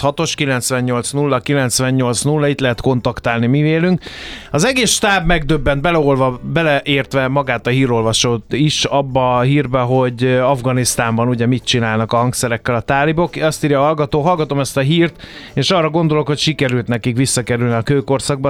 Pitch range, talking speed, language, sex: 125-155 Hz, 160 wpm, Hungarian, male